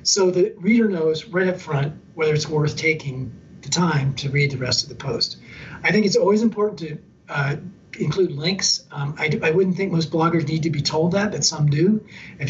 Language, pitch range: English, 145-190 Hz